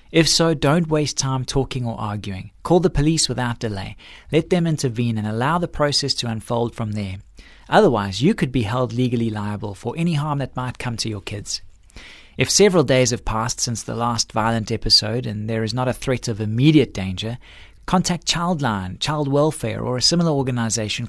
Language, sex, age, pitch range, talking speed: English, male, 30-49, 115-155 Hz, 190 wpm